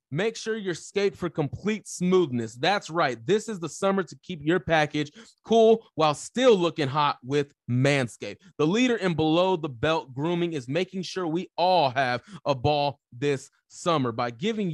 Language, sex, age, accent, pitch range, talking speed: English, male, 30-49, American, 150-190 Hz, 175 wpm